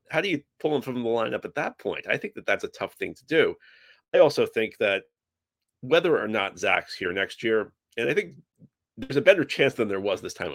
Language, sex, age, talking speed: English, male, 30-49, 245 wpm